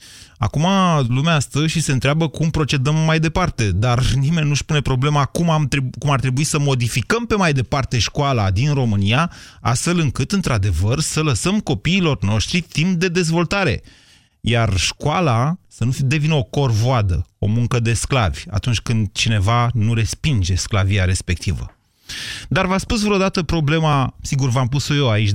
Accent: native